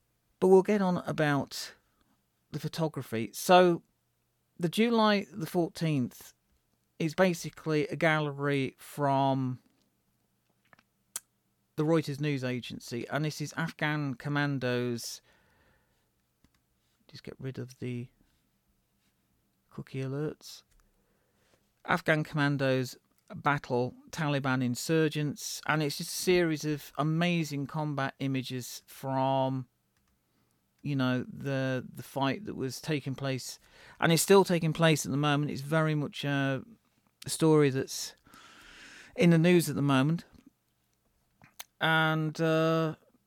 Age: 40-59